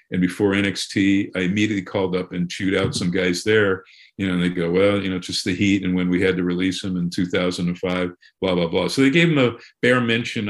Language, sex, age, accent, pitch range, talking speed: English, male, 50-69, American, 95-125 Hz, 240 wpm